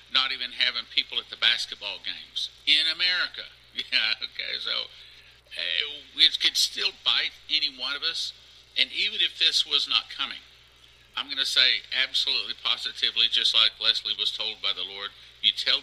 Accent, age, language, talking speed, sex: American, 50-69, English, 165 wpm, male